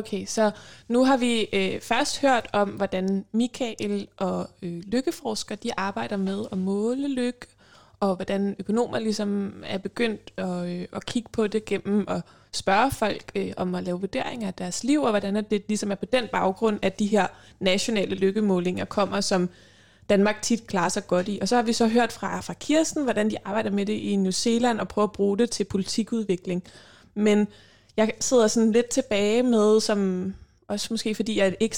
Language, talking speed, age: Danish, 195 wpm, 20-39